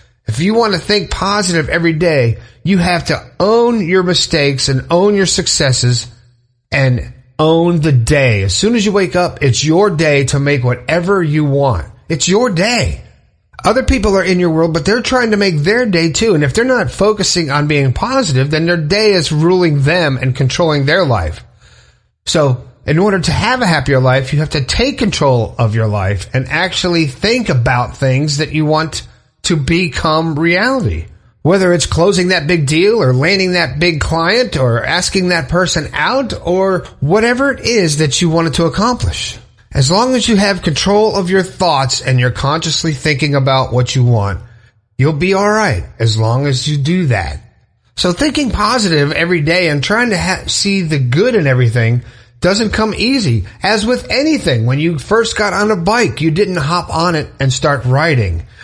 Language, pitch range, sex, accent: English, 130-190 Hz, male, American